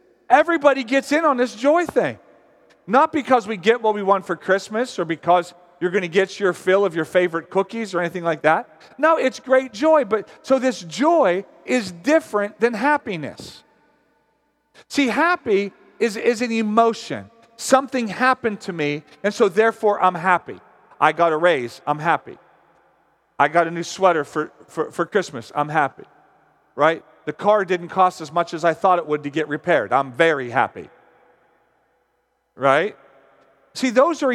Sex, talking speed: male, 170 wpm